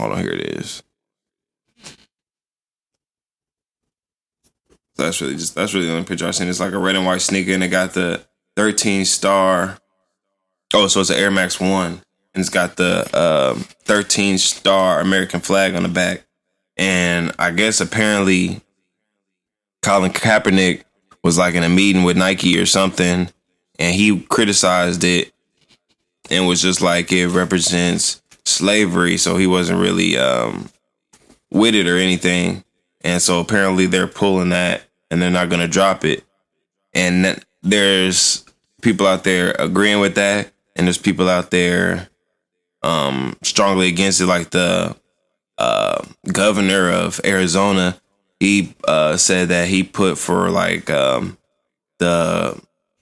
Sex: male